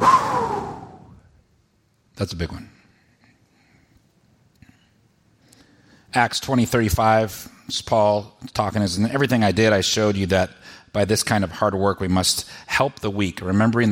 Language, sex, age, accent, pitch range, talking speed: English, male, 30-49, American, 95-120 Hz, 140 wpm